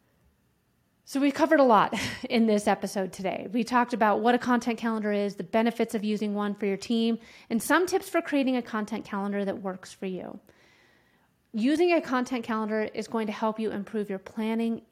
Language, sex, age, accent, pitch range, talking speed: English, female, 30-49, American, 205-245 Hz, 195 wpm